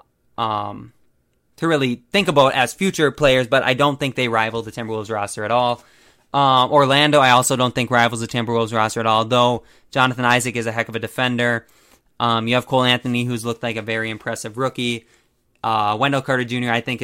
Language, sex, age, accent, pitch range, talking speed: English, male, 20-39, American, 115-135 Hz, 205 wpm